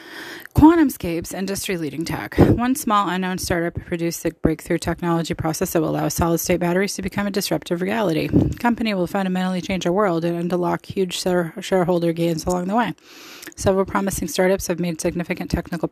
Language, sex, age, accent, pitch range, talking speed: English, female, 20-39, American, 165-195 Hz, 165 wpm